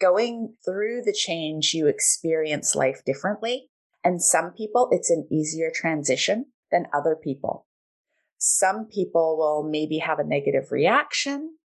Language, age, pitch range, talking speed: English, 30-49, 160-240 Hz, 135 wpm